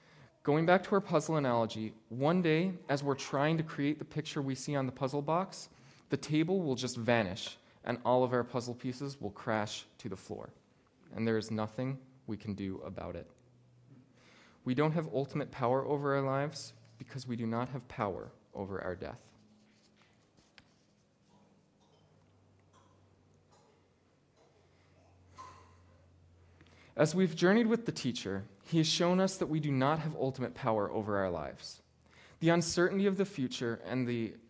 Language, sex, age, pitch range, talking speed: English, male, 20-39, 110-150 Hz, 155 wpm